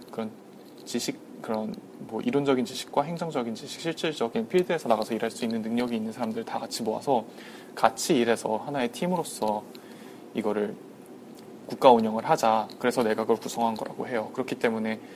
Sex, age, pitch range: male, 20-39, 115-165 Hz